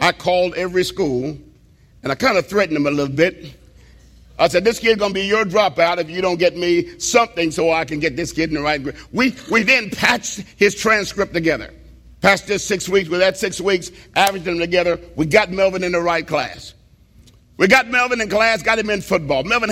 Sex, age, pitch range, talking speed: male, 50-69, 150-200 Hz, 225 wpm